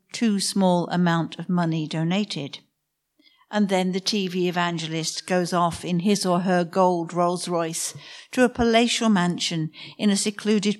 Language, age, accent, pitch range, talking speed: English, 60-79, British, 170-220 Hz, 145 wpm